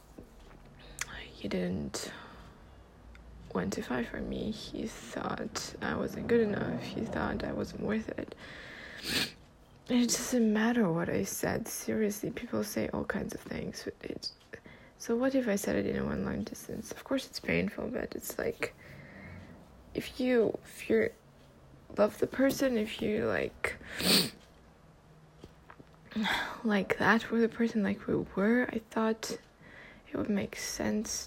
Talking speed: 140 wpm